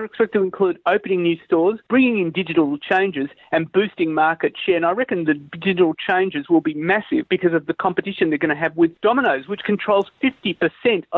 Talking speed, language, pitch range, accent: 195 wpm, English, 160-215 Hz, Australian